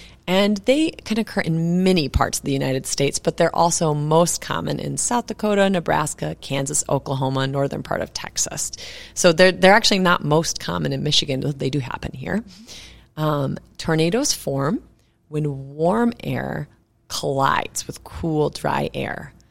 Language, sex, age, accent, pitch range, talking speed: English, female, 30-49, American, 140-185 Hz, 155 wpm